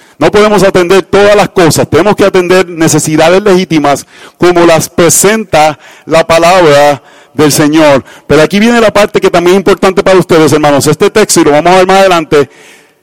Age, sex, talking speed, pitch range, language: 40-59, male, 180 wpm, 160-200 Hz, Spanish